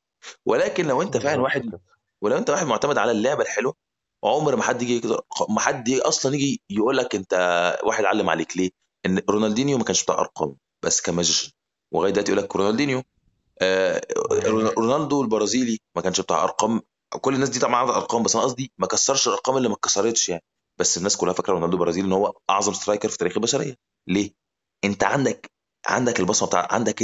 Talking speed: 180 wpm